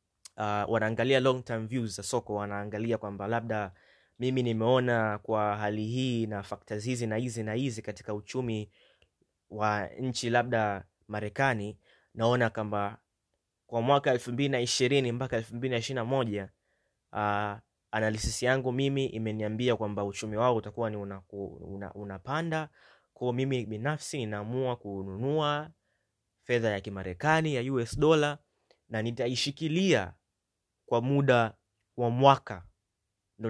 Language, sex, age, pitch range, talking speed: Swahili, male, 20-39, 105-130 Hz, 120 wpm